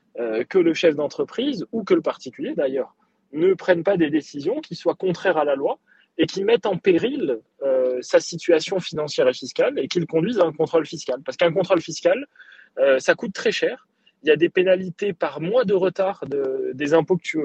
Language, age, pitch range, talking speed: French, 20-39, 155-250 Hz, 215 wpm